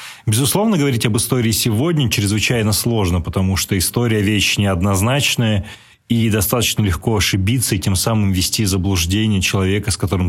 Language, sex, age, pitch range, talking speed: Russian, male, 20-39, 100-120 Hz, 140 wpm